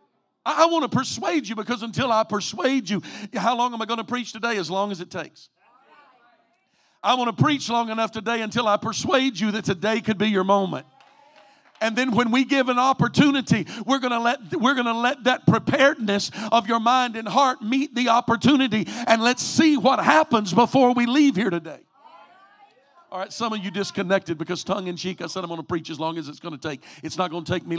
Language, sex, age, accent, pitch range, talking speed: English, male, 50-69, American, 205-250 Hz, 220 wpm